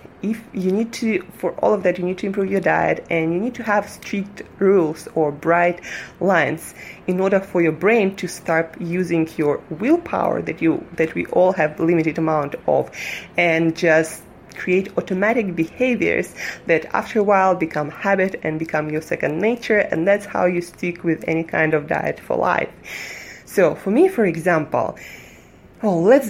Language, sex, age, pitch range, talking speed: English, female, 20-39, 160-200 Hz, 180 wpm